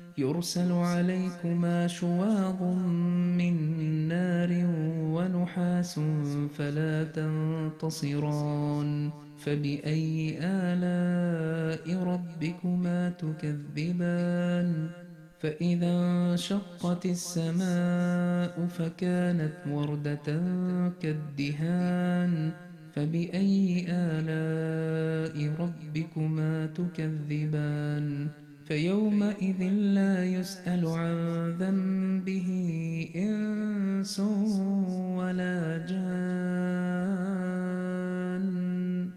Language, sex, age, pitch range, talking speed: Urdu, male, 30-49, 155-180 Hz, 55 wpm